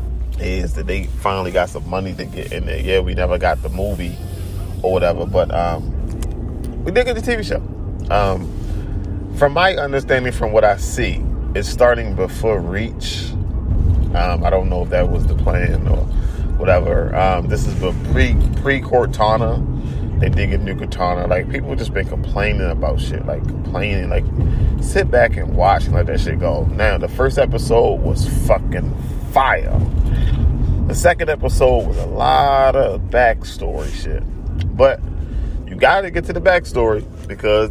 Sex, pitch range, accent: male, 80-100 Hz, American